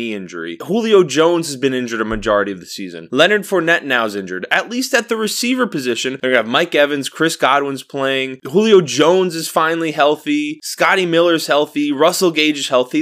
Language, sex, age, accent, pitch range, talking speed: English, male, 20-39, American, 140-190 Hz, 195 wpm